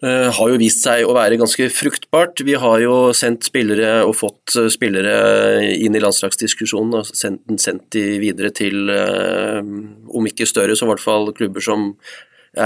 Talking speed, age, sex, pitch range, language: 155 wpm, 30-49, male, 110-130 Hz, English